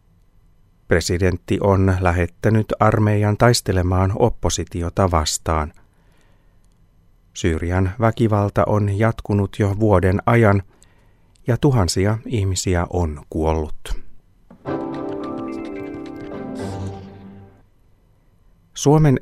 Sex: male